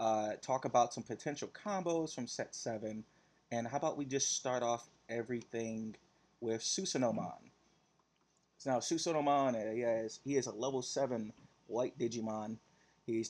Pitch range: 110-140 Hz